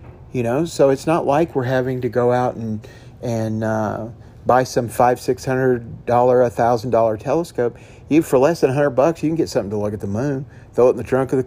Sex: male